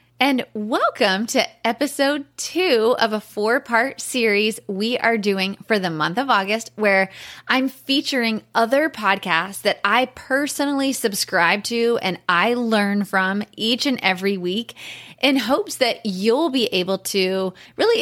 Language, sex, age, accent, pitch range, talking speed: English, female, 20-39, American, 195-240 Hz, 145 wpm